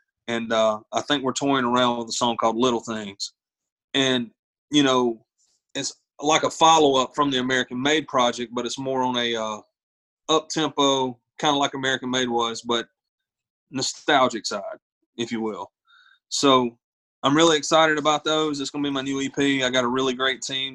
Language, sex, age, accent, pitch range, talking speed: English, male, 30-49, American, 120-145 Hz, 180 wpm